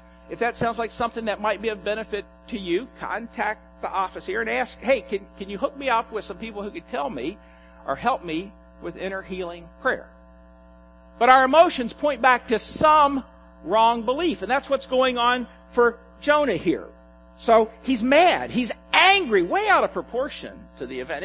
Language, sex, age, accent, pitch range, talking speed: English, male, 50-69, American, 180-280 Hz, 190 wpm